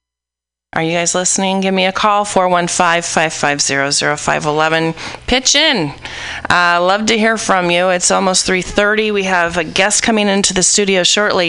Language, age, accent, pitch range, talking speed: English, 30-49, American, 160-215 Hz, 160 wpm